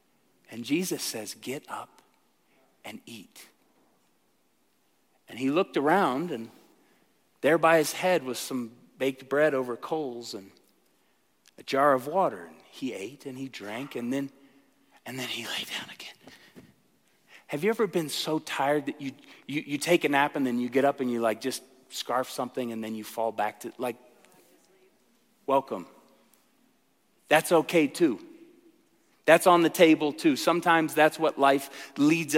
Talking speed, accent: 160 wpm, American